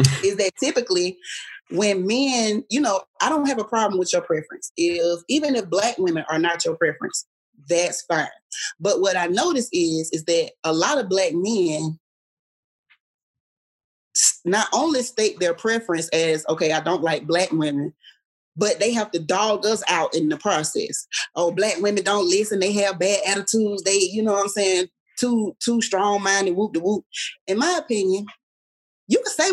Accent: American